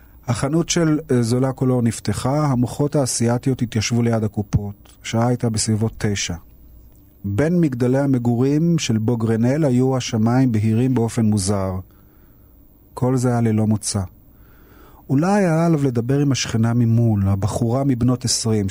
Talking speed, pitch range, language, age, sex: 130 wpm, 105-135 Hz, Hebrew, 40-59, male